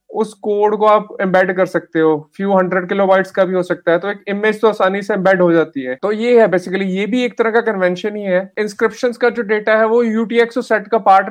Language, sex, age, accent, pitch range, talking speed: English, male, 30-49, Indian, 185-215 Hz, 255 wpm